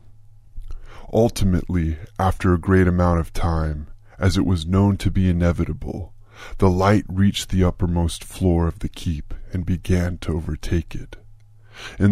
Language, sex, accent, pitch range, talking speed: English, female, American, 85-105 Hz, 145 wpm